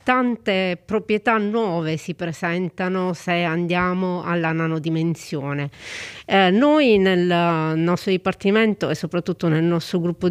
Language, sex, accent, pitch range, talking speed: Italian, female, native, 165-195 Hz, 110 wpm